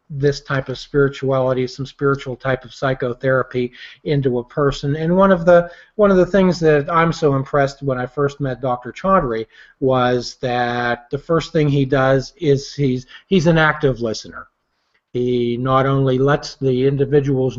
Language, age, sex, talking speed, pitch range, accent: English, 40-59, male, 165 wpm, 130-160 Hz, American